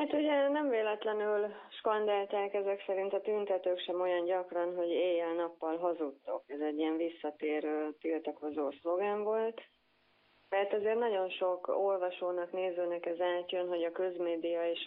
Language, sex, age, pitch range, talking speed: Hungarian, female, 30-49, 160-190 Hz, 135 wpm